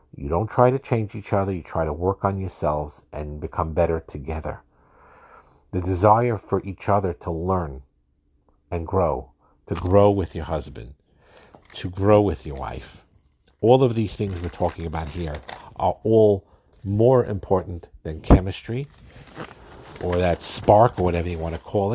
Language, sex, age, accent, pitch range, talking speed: English, male, 50-69, American, 80-100 Hz, 160 wpm